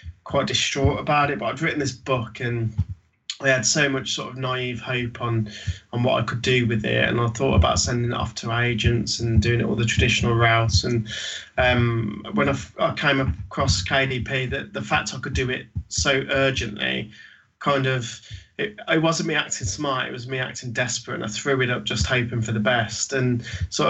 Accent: British